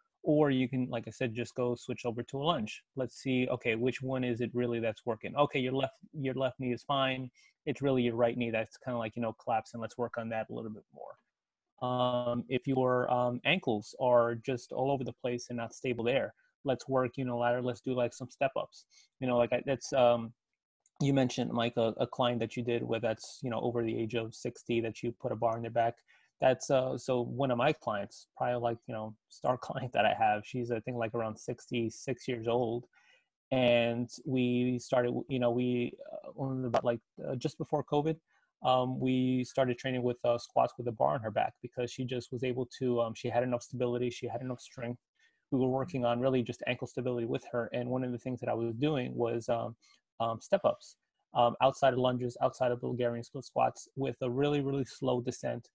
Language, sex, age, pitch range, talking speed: English, male, 20-39, 120-130 Hz, 230 wpm